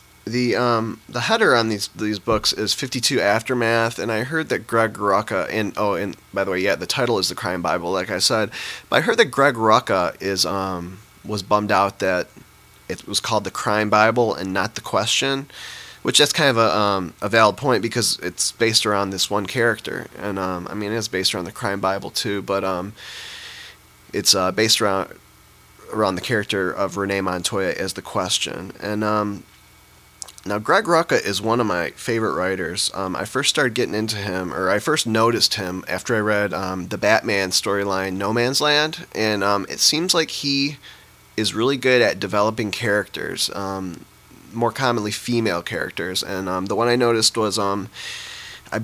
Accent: American